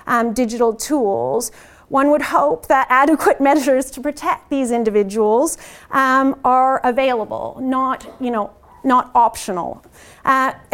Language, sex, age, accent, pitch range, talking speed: English, female, 30-49, American, 225-280 Hz, 110 wpm